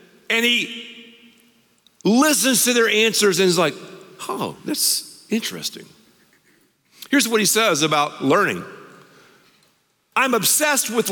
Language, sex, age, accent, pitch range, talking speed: English, male, 50-69, American, 160-225 Hz, 115 wpm